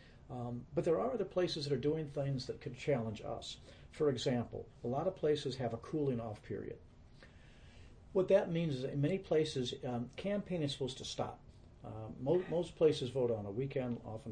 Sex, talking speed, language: male, 195 wpm, English